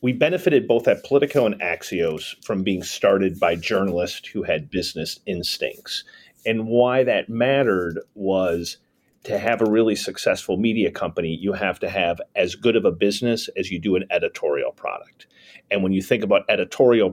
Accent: American